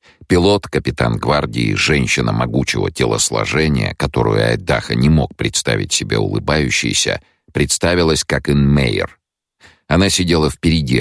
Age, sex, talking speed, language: 50-69, male, 105 wpm, English